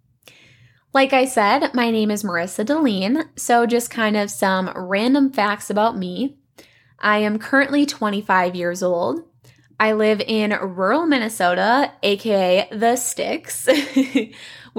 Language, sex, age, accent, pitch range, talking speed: English, female, 10-29, American, 185-255 Hz, 125 wpm